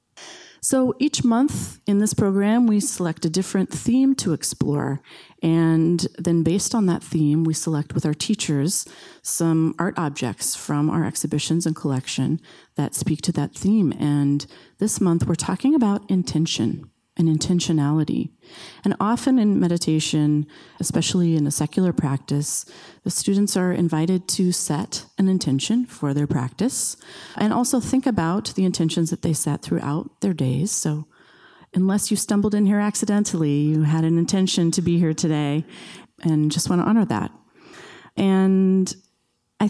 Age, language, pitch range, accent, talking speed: 30-49, English, 155-195 Hz, American, 155 wpm